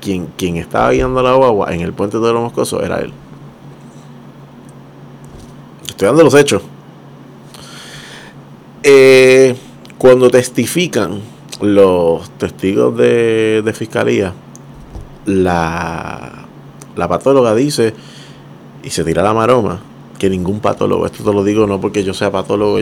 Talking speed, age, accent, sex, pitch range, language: 125 wpm, 30-49, Venezuelan, male, 95-120 Hz, Spanish